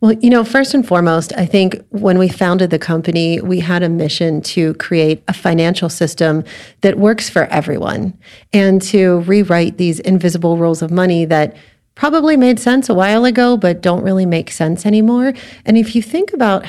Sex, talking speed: female, 185 wpm